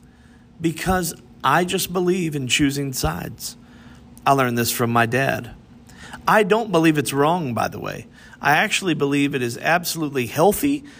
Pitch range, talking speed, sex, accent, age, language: 120-170 Hz, 155 wpm, male, American, 40-59, English